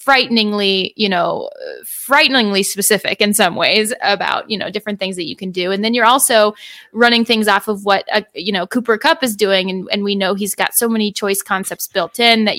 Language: English